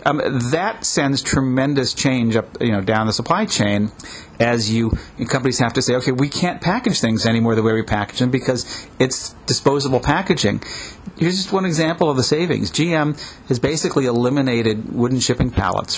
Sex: male